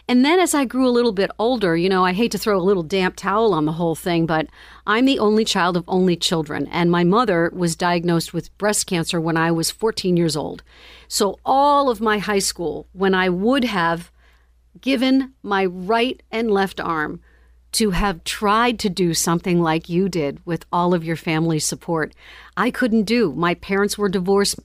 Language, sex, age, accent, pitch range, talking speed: English, female, 50-69, American, 170-220 Hz, 200 wpm